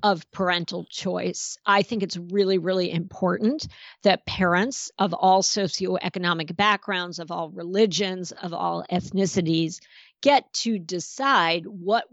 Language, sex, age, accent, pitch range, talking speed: English, female, 50-69, American, 180-225 Hz, 125 wpm